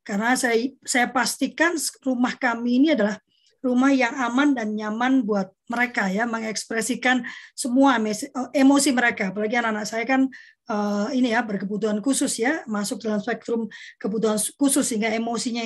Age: 20-39